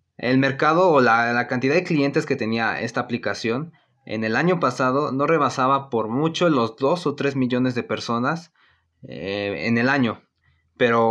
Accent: Mexican